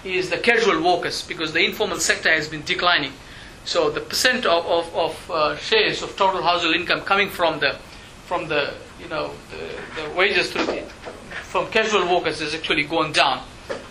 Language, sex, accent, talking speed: English, male, Indian, 175 wpm